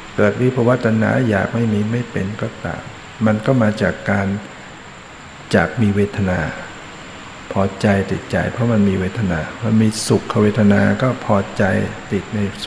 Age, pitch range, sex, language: 60-79, 100-115 Hz, male, Thai